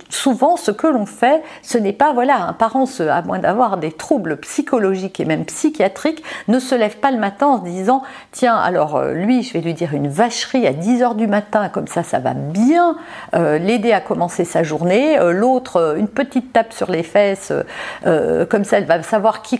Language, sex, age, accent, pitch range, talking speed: French, female, 50-69, French, 190-255 Hz, 205 wpm